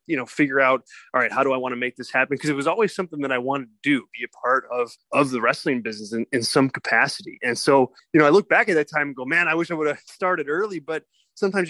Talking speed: 295 wpm